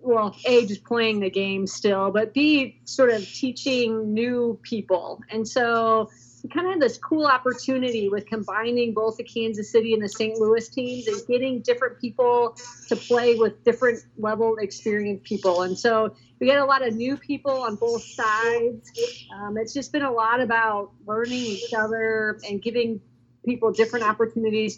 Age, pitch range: 40-59, 215-260 Hz